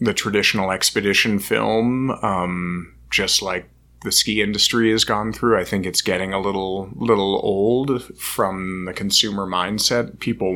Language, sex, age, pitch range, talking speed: English, male, 30-49, 95-105 Hz, 150 wpm